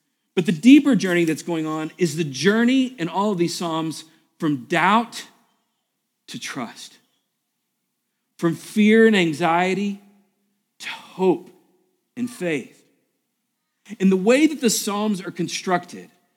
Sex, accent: male, American